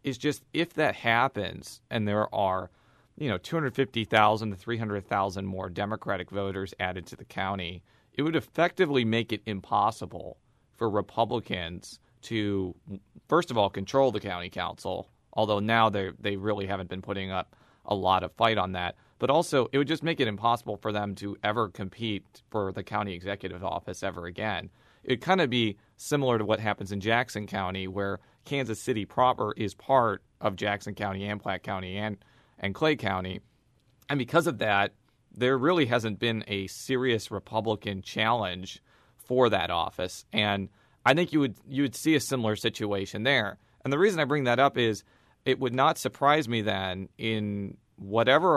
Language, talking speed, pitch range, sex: English, 175 wpm, 100-125 Hz, male